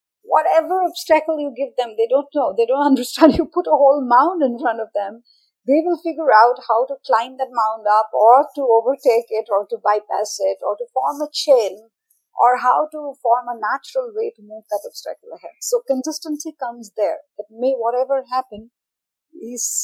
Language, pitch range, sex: English, 230-320 Hz, female